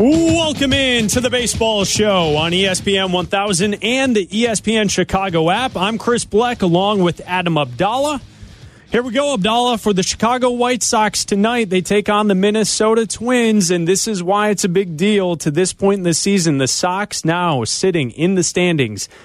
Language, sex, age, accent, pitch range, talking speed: English, male, 30-49, American, 160-210 Hz, 180 wpm